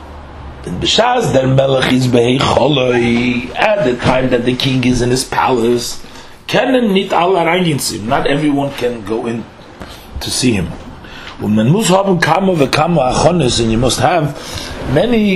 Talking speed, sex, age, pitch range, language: 90 wpm, male, 40-59, 110-150 Hz, English